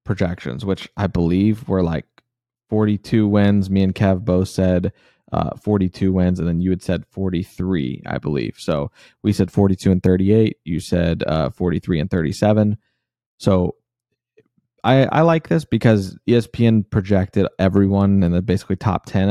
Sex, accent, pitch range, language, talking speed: male, American, 95-110 Hz, English, 155 wpm